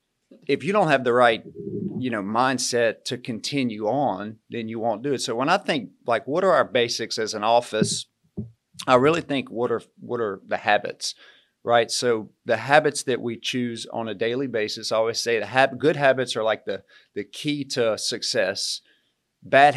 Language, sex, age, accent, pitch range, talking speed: English, male, 40-59, American, 110-135 Hz, 195 wpm